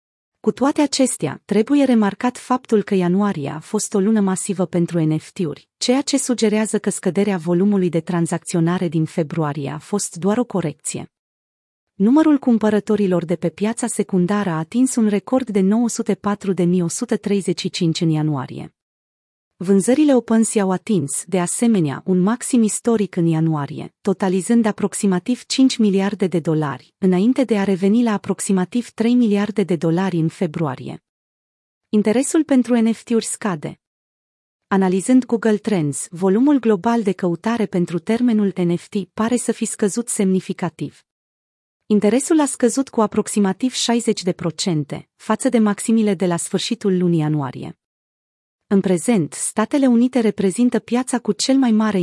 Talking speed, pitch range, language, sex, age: 135 wpm, 175-225 Hz, Romanian, female, 30-49